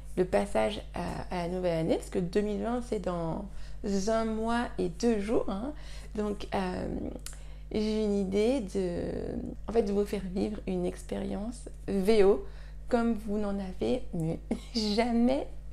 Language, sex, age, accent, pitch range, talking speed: French, female, 30-49, French, 175-225 Hz, 140 wpm